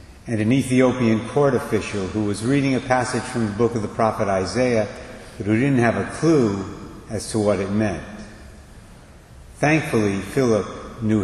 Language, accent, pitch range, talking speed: English, American, 100-120 Hz, 165 wpm